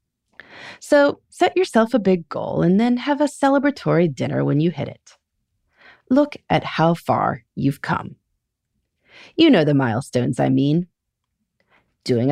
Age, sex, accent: 30-49, female, American